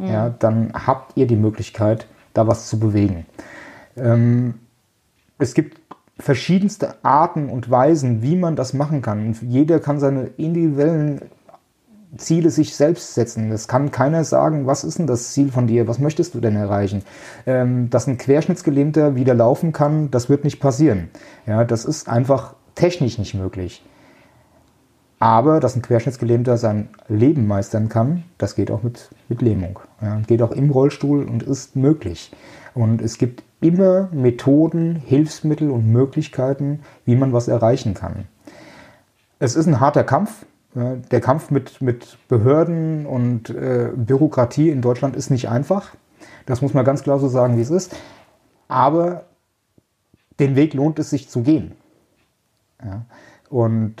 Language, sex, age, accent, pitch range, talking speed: German, male, 30-49, German, 115-145 Hz, 150 wpm